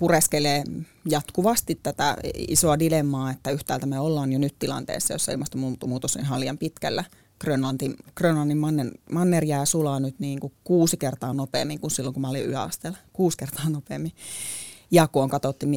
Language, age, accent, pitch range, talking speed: Finnish, 30-49, native, 135-155 Hz, 160 wpm